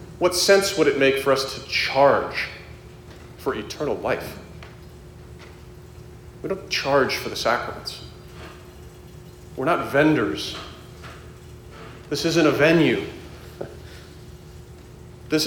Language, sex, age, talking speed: English, male, 40-59, 100 wpm